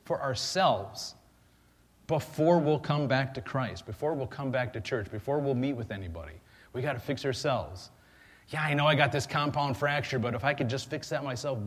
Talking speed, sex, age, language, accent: 205 wpm, male, 30-49, English, American